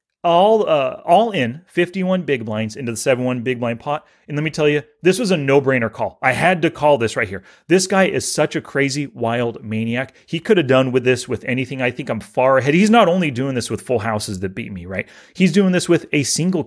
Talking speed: 245 wpm